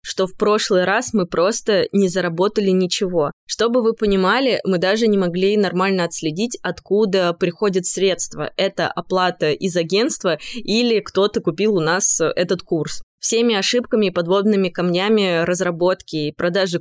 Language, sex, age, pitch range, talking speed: Russian, female, 20-39, 180-215 Hz, 145 wpm